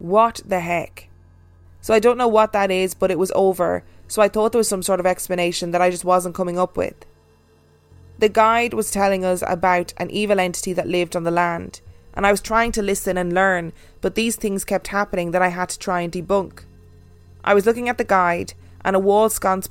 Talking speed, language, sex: 225 wpm, English, female